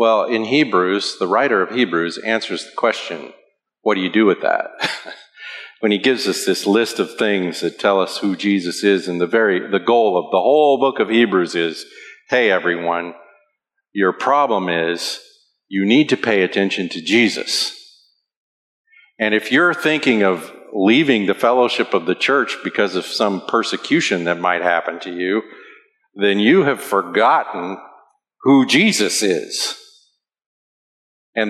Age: 50-69